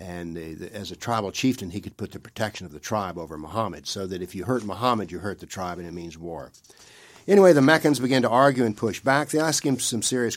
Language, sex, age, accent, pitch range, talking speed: English, male, 60-79, American, 105-140 Hz, 250 wpm